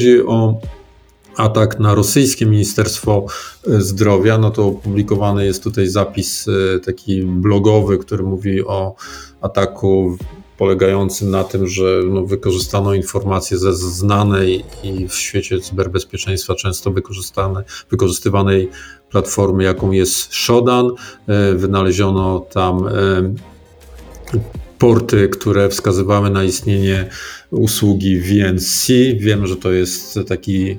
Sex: male